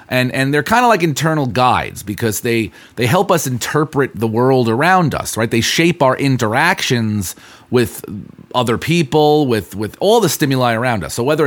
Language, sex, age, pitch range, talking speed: English, male, 30-49, 120-165 Hz, 185 wpm